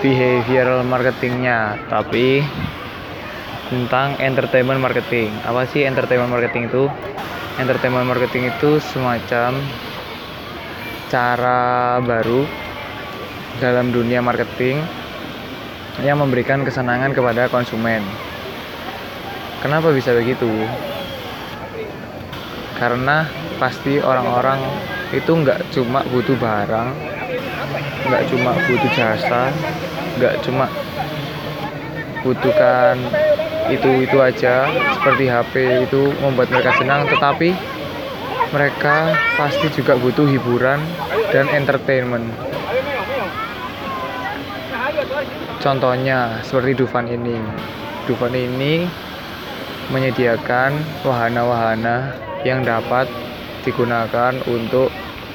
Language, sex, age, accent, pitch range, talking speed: Indonesian, male, 20-39, native, 120-135 Hz, 75 wpm